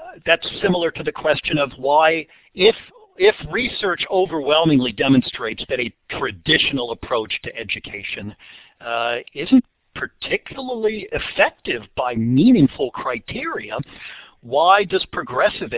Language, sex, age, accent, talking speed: English, male, 50-69, American, 105 wpm